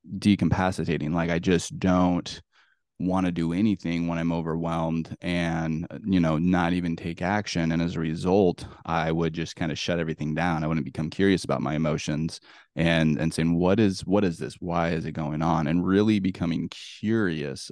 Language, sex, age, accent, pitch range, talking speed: English, male, 20-39, American, 80-90 Hz, 185 wpm